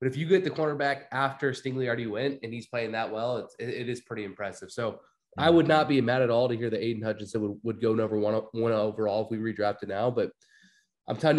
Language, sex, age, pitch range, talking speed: English, male, 20-39, 120-145 Hz, 250 wpm